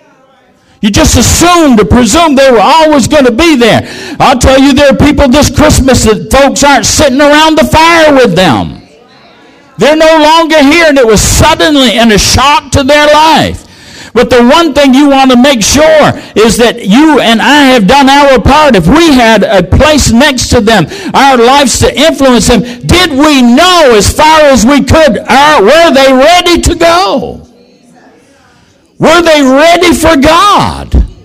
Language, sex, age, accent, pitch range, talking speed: English, male, 60-79, American, 210-310 Hz, 180 wpm